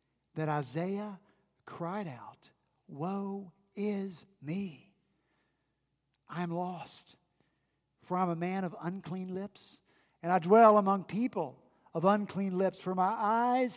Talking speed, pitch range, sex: 125 wpm, 145-195 Hz, male